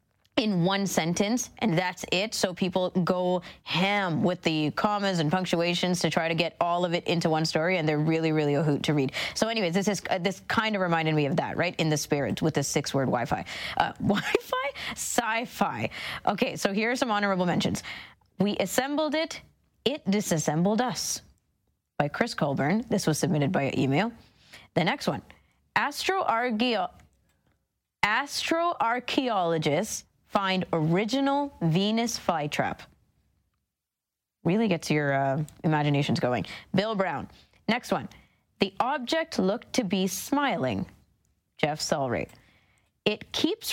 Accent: American